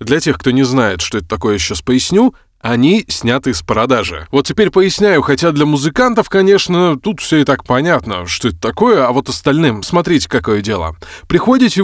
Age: 20-39